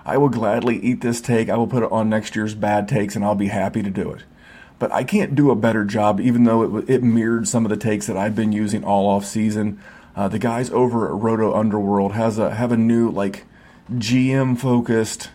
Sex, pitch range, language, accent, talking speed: male, 105-125 Hz, English, American, 235 wpm